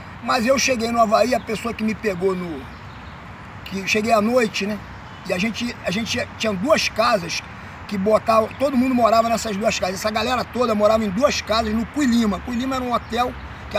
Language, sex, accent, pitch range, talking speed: Portuguese, male, Brazilian, 190-250 Hz, 210 wpm